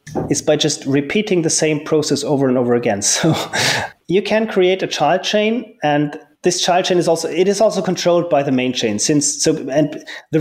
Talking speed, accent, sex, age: 210 wpm, German, male, 30-49